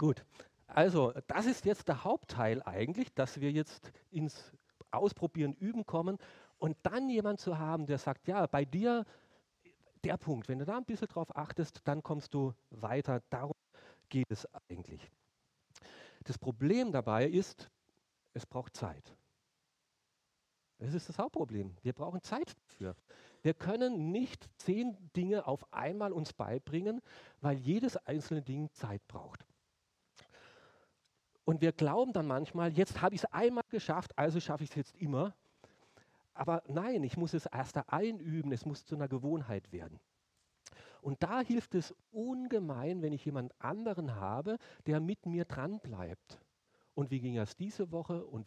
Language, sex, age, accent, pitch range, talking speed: German, male, 40-59, German, 130-185 Hz, 155 wpm